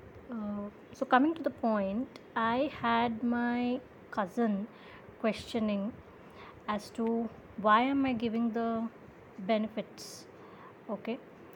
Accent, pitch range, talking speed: native, 210-250 Hz, 105 wpm